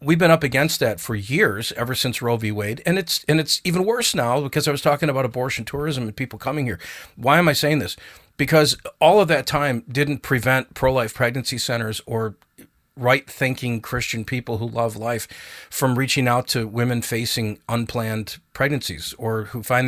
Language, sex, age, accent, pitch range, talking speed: English, male, 40-59, American, 110-135 Hz, 190 wpm